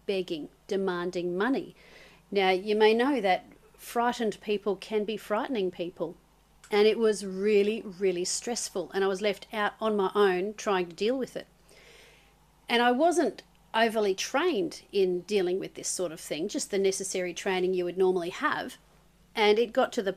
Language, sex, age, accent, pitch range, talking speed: English, female, 40-59, Australian, 185-225 Hz, 175 wpm